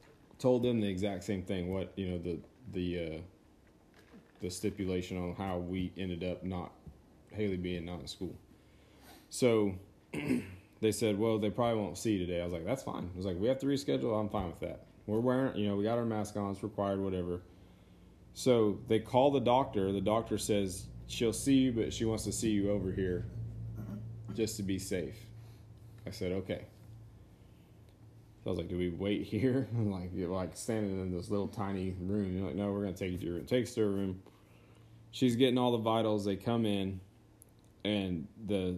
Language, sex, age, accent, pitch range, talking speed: English, male, 30-49, American, 95-110 Hz, 205 wpm